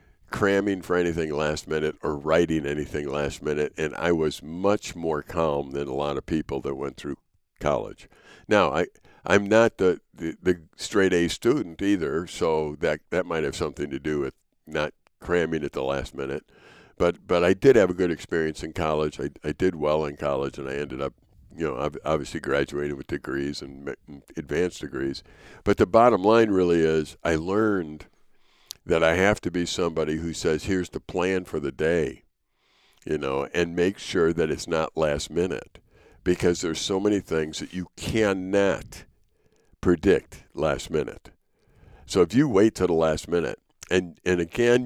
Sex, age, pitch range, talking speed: male, 60-79, 75-100 Hz, 180 wpm